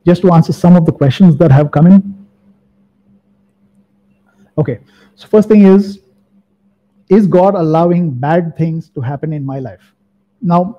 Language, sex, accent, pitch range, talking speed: English, male, Indian, 155-195 Hz, 150 wpm